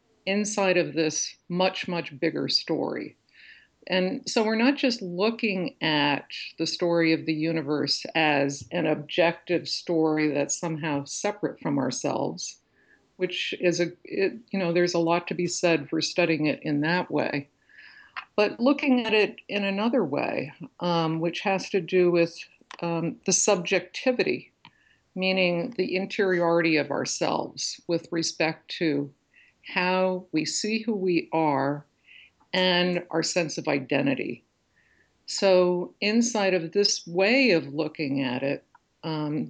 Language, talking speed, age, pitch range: English, 135 wpm, 50-69, 160-200 Hz